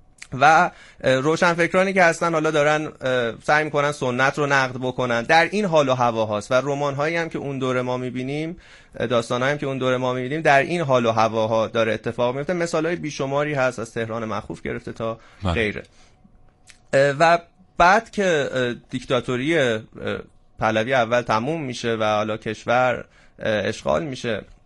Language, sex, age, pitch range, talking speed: Persian, male, 30-49, 115-145 Hz, 160 wpm